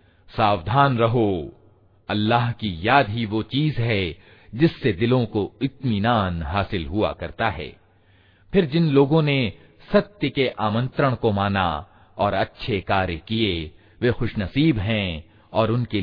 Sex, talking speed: male, 130 wpm